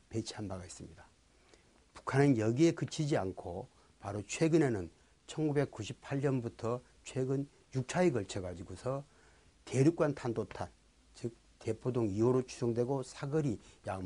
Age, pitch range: 60-79, 100-140 Hz